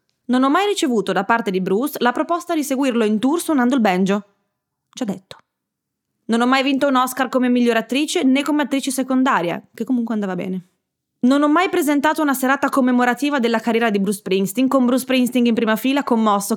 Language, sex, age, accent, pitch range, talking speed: Italian, female, 20-39, native, 205-280 Hz, 200 wpm